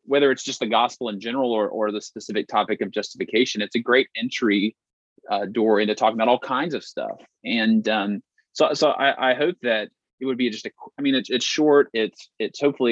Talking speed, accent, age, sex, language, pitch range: 225 wpm, American, 30-49, male, English, 105-125 Hz